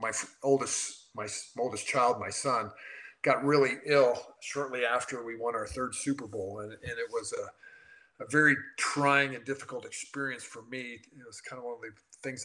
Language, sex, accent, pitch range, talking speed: English, male, American, 115-145 Hz, 190 wpm